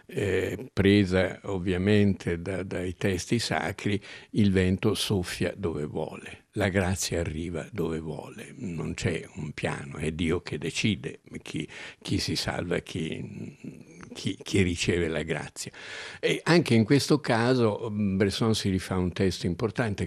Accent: native